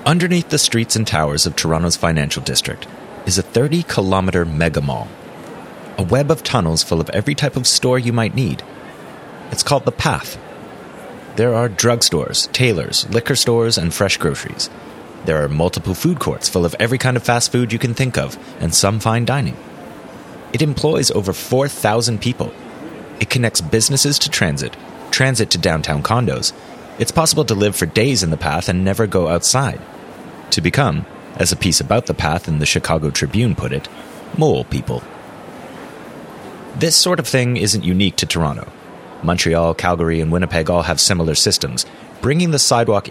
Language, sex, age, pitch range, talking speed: English, male, 30-49, 85-130 Hz, 170 wpm